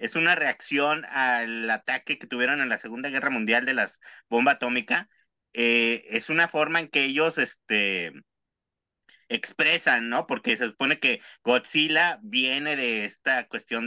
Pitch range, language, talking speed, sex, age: 120-170 Hz, Spanish, 145 wpm, male, 40-59